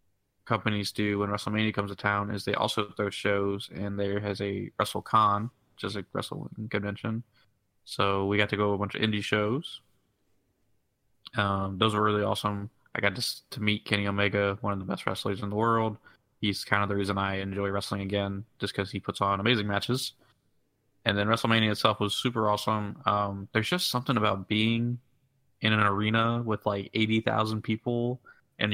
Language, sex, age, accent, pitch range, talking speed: English, male, 20-39, American, 100-115 Hz, 190 wpm